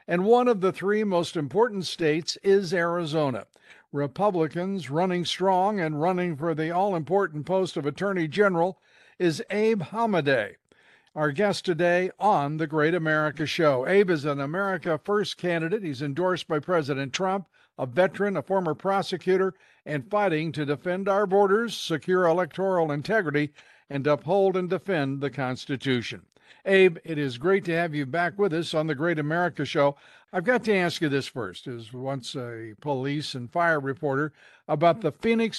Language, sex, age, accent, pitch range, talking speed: English, male, 60-79, American, 150-190 Hz, 160 wpm